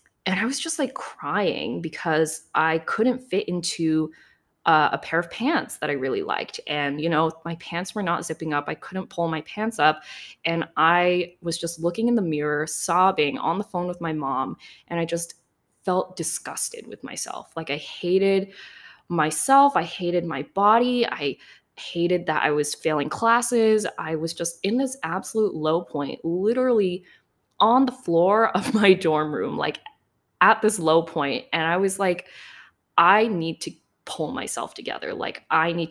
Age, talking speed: 20-39, 175 wpm